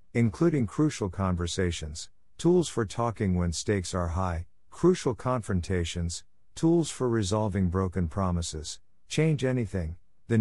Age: 50-69